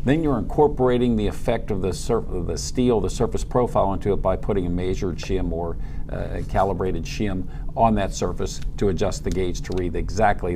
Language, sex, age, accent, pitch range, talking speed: English, male, 50-69, American, 90-115 Hz, 200 wpm